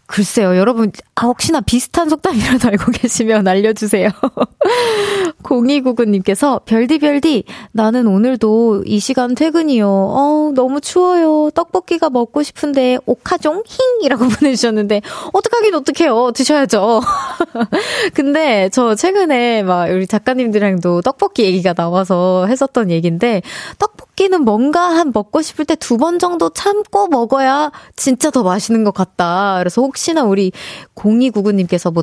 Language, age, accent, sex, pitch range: Korean, 20-39, native, female, 195-295 Hz